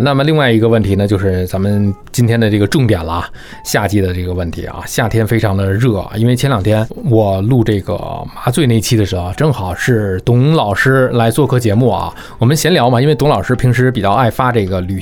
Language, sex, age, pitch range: Chinese, male, 20-39, 100-145 Hz